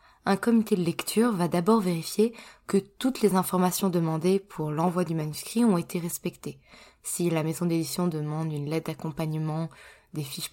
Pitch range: 160-195 Hz